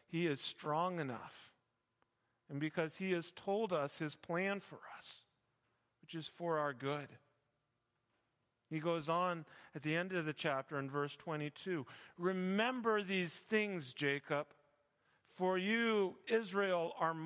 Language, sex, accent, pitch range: English, male, American, 145-200 Hz